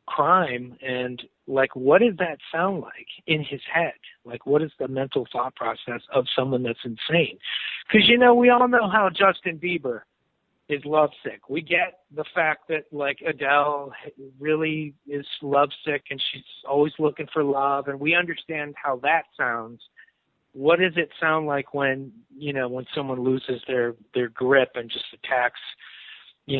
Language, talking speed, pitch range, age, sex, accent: English, 165 wpm, 130-160 Hz, 50-69, male, American